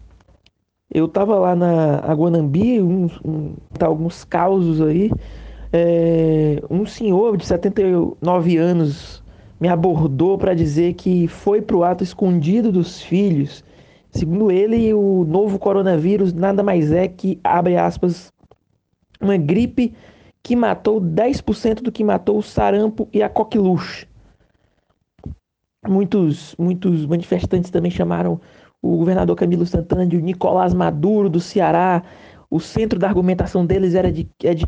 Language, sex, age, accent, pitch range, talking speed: Portuguese, male, 20-39, Brazilian, 165-195 Hz, 130 wpm